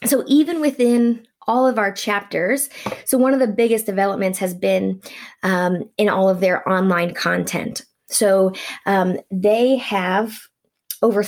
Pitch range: 185-230 Hz